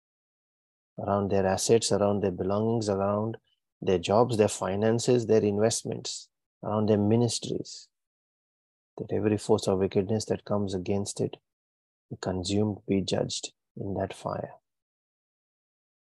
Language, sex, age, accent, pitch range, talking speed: English, male, 30-49, Indian, 100-115 Hz, 120 wpm